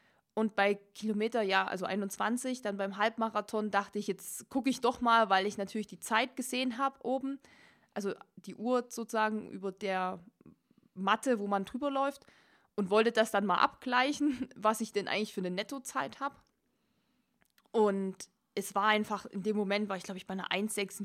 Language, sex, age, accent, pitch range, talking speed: German, female, 20-39, German, 200-250 Hz, 175 wpm